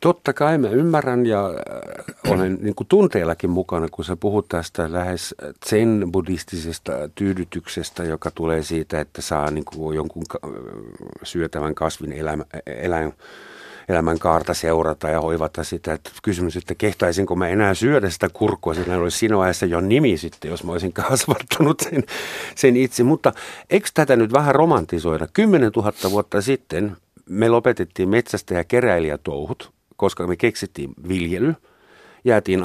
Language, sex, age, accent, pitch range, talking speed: Finnish, male, 50-69, native, 85-110 Hz, 140 wpm